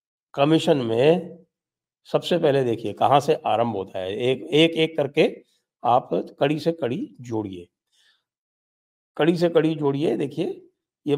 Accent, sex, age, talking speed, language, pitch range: Indian, male, 50-69, 135 wpm, English, 115-160 Hz